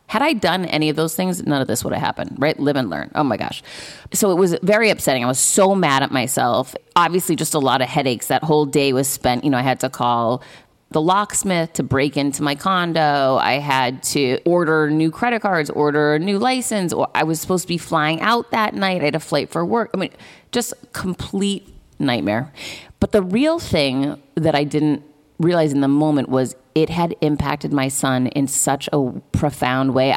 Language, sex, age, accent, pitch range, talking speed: English, female, 30-49, American, 135-175 Hz, 215 wpm